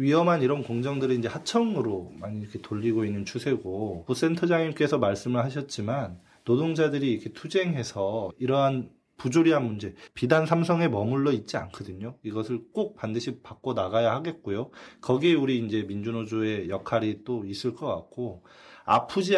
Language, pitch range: Korean, 110-140 Hz